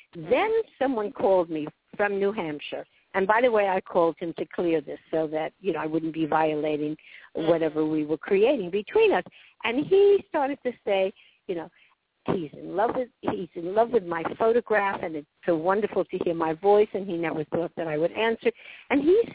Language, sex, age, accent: English, female, 60-79, American